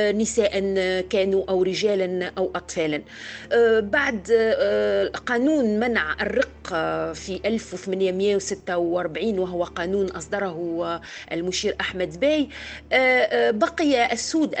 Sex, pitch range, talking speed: female, 185-255 Hz, 80 wpm